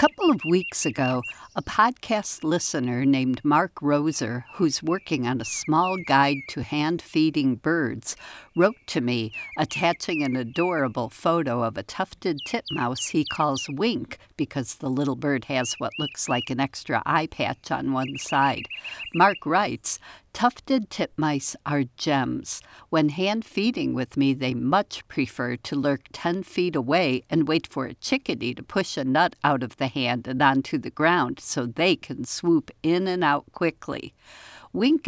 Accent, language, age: American, English, 60-79